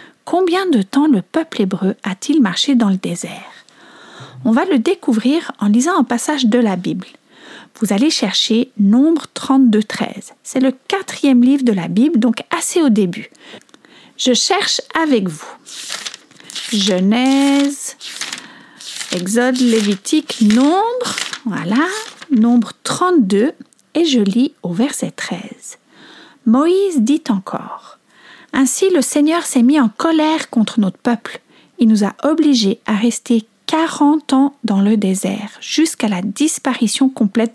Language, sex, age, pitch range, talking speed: French, female, 50-69, 220-300 Hz, 135 wpm